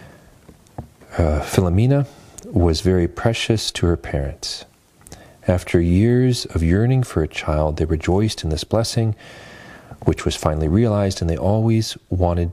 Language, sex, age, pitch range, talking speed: English, male, 40-59, 85-110 Hz, 135 wpm